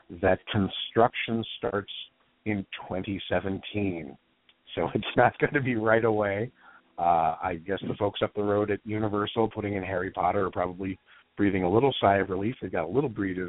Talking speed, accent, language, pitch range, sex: 180 wpm, American, English, 95-115 Hz, male